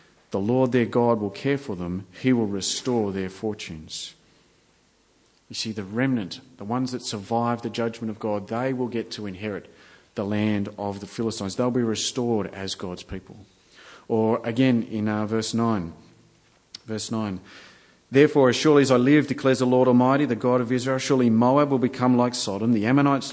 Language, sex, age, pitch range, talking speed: English, male, 40-59, 105-135 Hz, 185 wpm